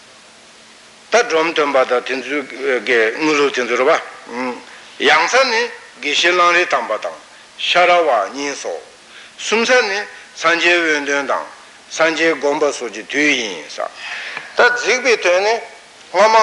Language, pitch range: Italian, 150-225 Hz